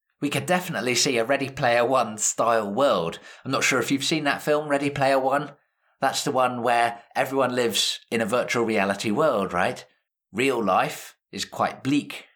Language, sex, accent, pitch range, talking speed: English, male, British, 110-150 Hz, 185 wpm